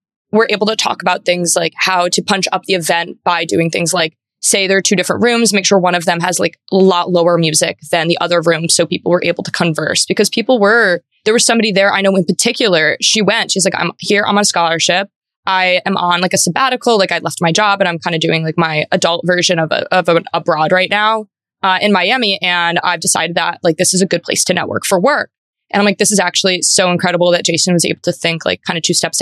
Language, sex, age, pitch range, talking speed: English, female, 20-39, 165-195 Hz, 265 wpm